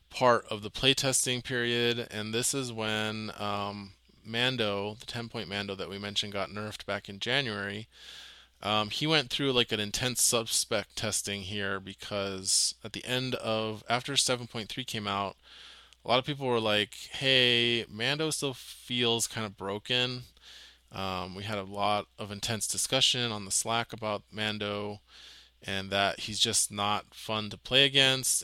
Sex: male